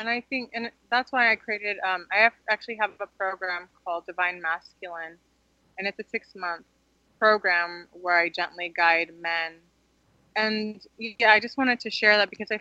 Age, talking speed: 20-39, 180 wpm